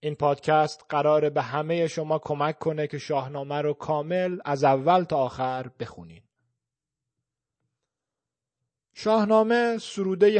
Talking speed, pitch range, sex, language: 115 wpm, 140-165 Hz, male, Persian